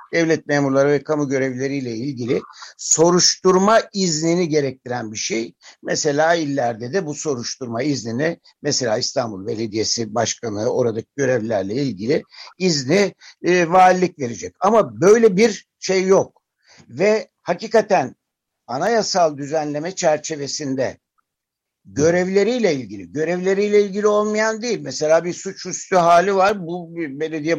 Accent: native